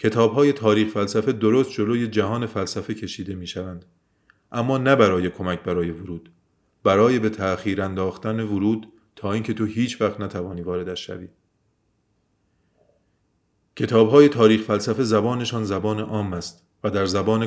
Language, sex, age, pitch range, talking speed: Persian, male, 30-49, 95-115 Hz, 135 wpm